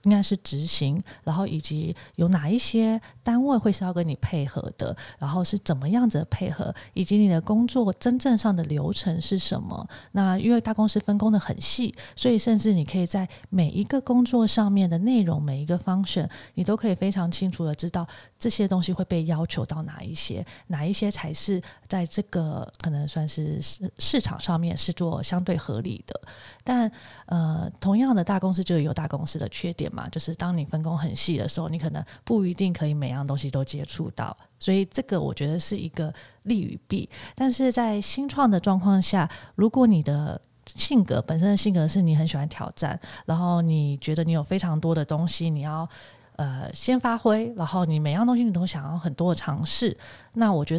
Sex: female